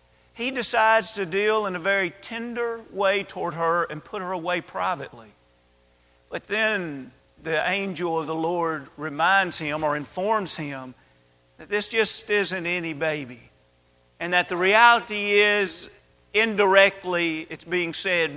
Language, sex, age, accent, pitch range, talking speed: English, male, 40-59, American, 160-220 Hz, 140 wpm